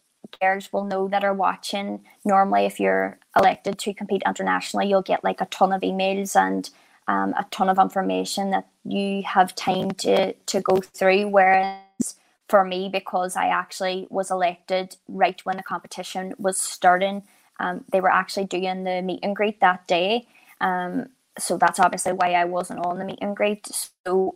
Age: 20-39